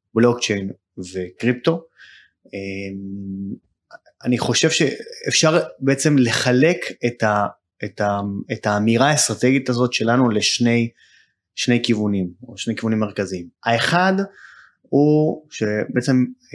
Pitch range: 105-150 Hz